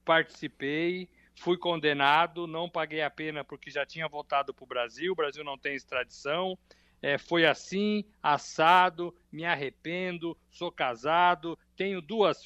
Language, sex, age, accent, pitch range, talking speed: Portuguese, male, 60-79, Brazilian, 150-185 Hz, 135 wpm